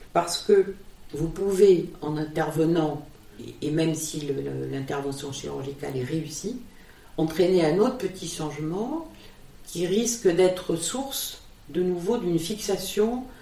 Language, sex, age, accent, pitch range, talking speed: French, female, 50-69, French, 140-185 Hz, 125 wpm